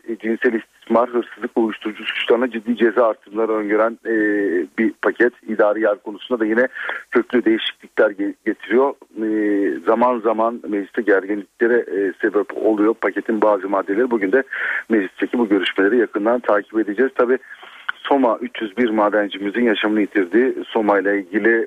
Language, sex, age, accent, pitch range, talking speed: Turkish, male, 40-59, native, 105-135 Hz, 120 wpm